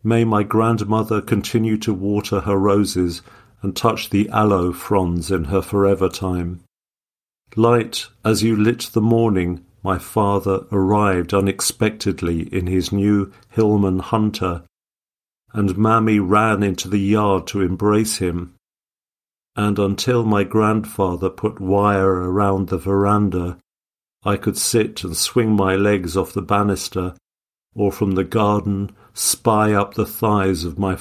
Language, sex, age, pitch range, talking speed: English, male, 50-69, 95-110 Hz, 135 wpm